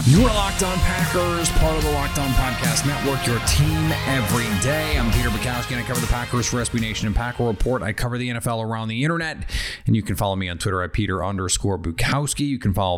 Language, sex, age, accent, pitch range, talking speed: English, male, 30-49, American, 105-130 Hz, 235 wpm